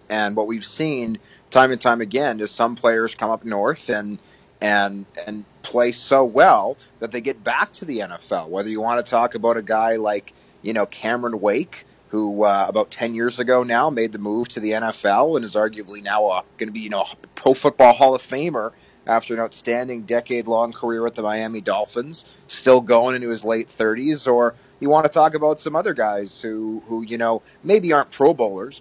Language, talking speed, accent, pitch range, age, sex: English, 210 wpm, American, 105-120 Hz, 30-49, male